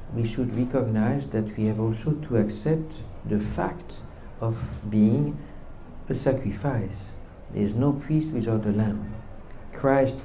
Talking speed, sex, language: 135 wpm, male, English